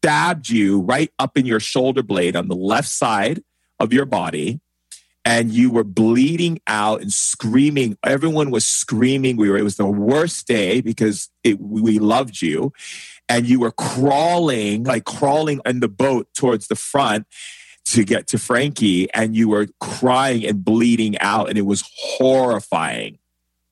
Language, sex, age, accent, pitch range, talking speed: English, male, 40-59, American, 95-125 Hz, 160 wpm